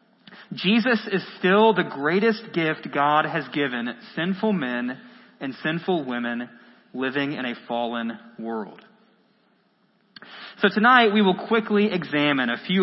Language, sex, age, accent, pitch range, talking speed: English, male, 30-49, American, 160-220 Hz, 125 wpm